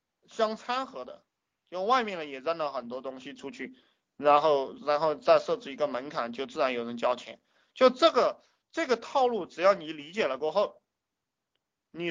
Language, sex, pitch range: Chinese, male, 160-240 Hz